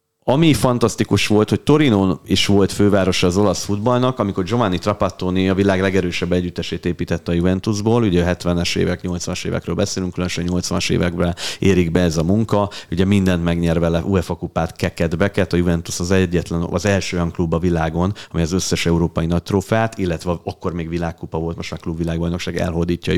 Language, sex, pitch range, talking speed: Hungarian, male, 85-95 Hz, 175 wpm